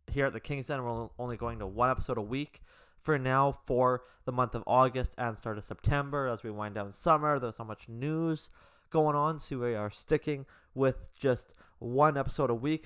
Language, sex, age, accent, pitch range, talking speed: English, male, 20-39, American, 110-135 Hz, 210 wpm